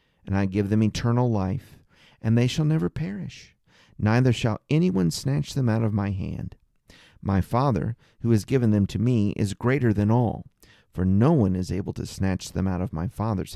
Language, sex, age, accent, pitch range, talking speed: English, male, 40-59, American, 100-145 Hz, 195 wpm